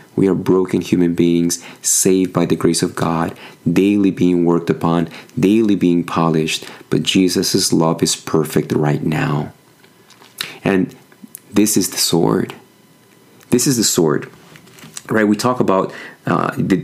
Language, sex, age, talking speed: English, male, 30-49, 145 wpm